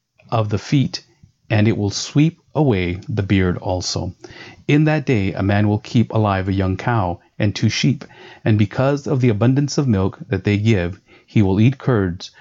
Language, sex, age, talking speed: English, male, 40-59, 190 wpm